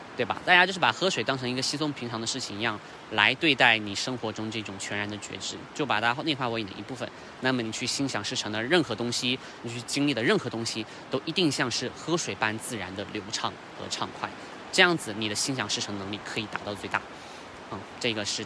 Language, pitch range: Chinese, 110-140 Hz